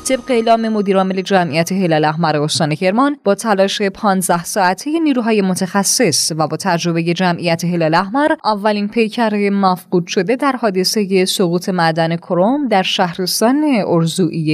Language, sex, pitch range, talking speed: Persian, female, 180-230 Hz, 130 wpm